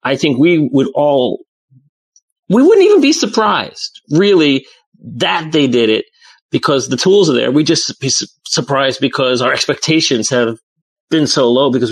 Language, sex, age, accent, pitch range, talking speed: English, male, 40-59, American, 130-190 Hz, 170 wpm